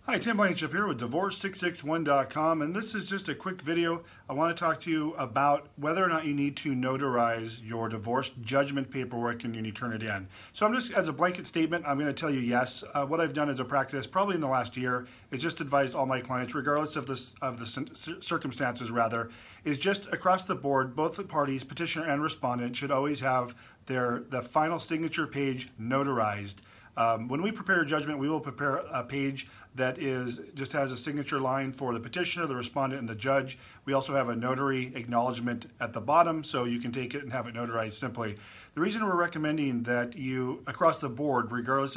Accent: American